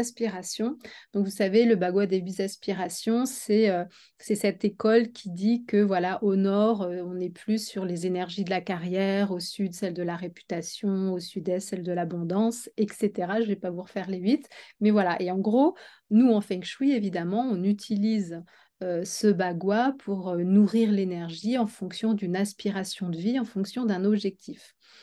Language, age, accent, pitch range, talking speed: French, 30-49, French, 190-230 Hz, 185 wpm